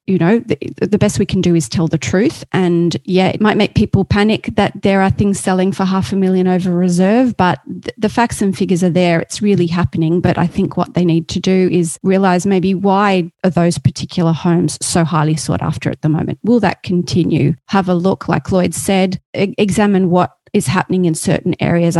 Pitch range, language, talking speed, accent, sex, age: 165-190 Hz, English, 220 wpm, Australian, female, 30-49